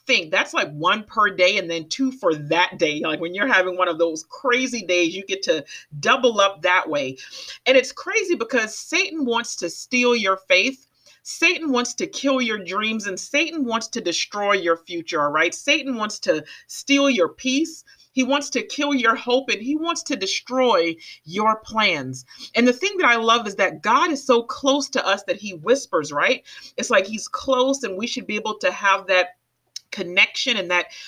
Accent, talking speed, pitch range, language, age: American, 200 wpm, 190-260 Hz, English, 40-59